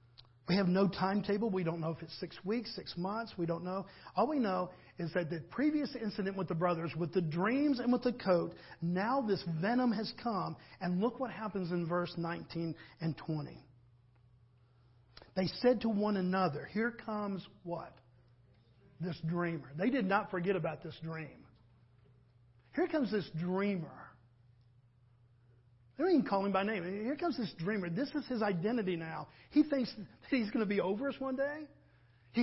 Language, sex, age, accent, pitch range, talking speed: English, male, 50-69, American, 160-225 Hz, 180 wpm